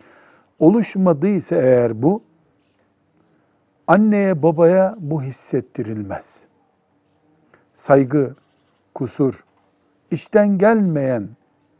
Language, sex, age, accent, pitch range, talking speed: Turkish, male, 60-79, native, 125-160 Hz, 55 wpm